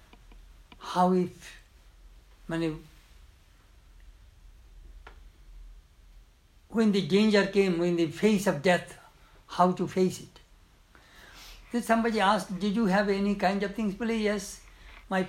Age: 60-79